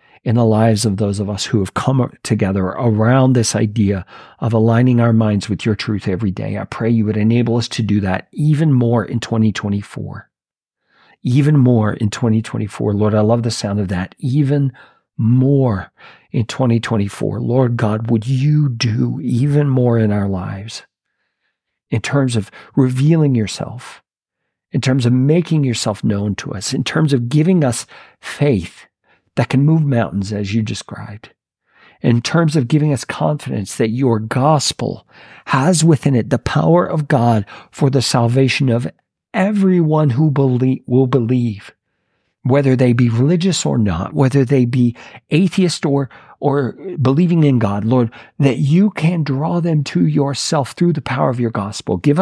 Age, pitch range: 50-69, 110-140 Hz